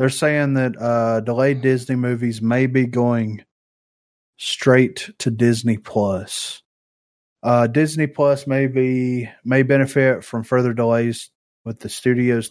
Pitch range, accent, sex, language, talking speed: 110-125 Hz, American, male, English, 130 wpm